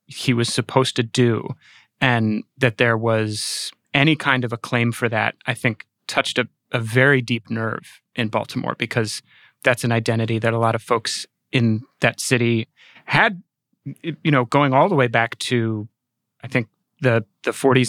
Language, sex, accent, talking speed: English, male, American, 170 wpm